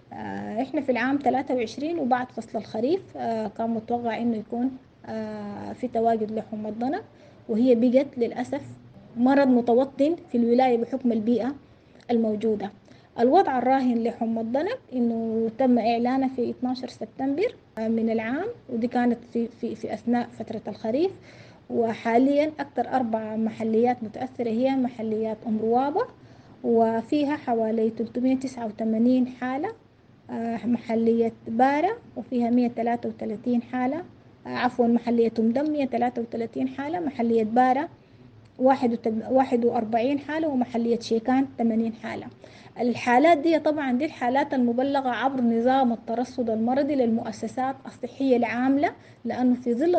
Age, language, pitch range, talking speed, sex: 20-39, English, 230-265 Hz, 110 wpm, female